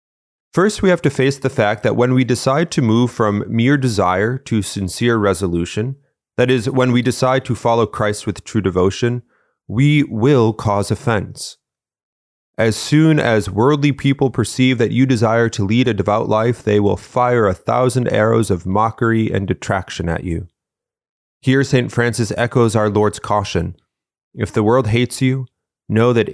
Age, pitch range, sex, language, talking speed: 30-49, 100-130 Hz, male, English, 170 wpm